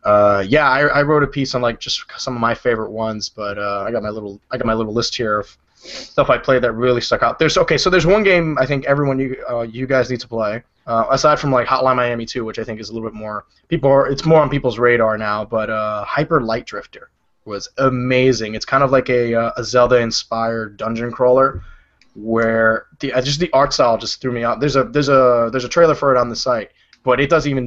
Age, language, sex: 20-39, English, male